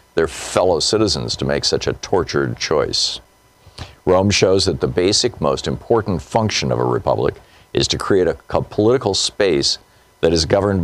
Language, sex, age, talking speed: English, male, 50-69, 160 wpm